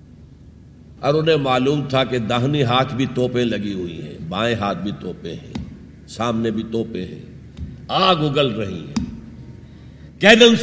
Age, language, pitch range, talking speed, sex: 60-79, Urdu, 125-205 Hz, 140 wpm, male